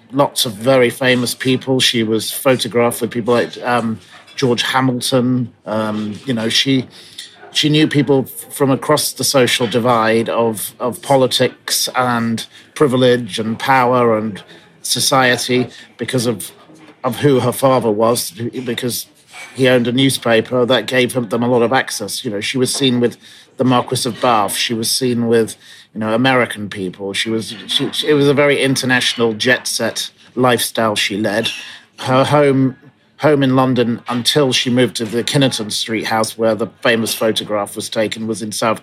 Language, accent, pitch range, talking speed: English, British, 110-125 Hz, 170 wpm